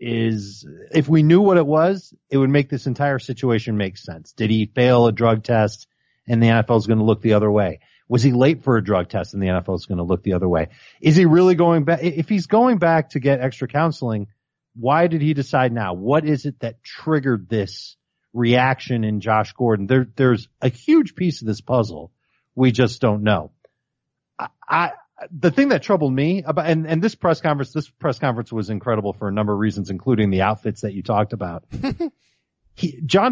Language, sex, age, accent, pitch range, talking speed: English, male, 40-59, American, 110-155 Hz, 215 wpm